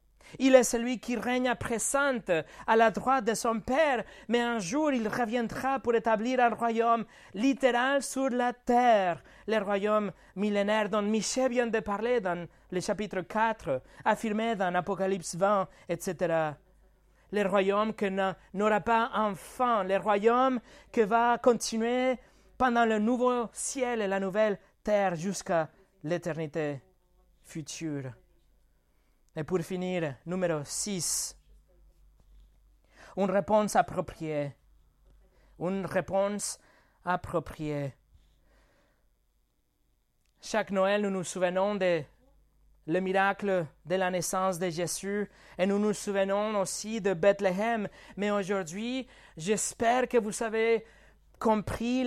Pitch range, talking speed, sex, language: 180-230 Hz, 120 wpm, male, French